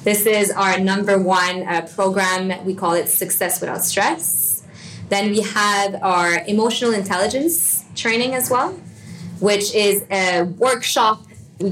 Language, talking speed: English, 140 wpm